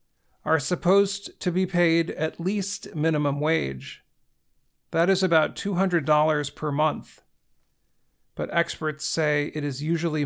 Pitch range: 150-185 Hz